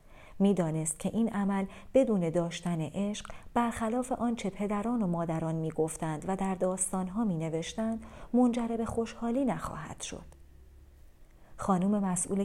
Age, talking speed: 40-59, 125 wpm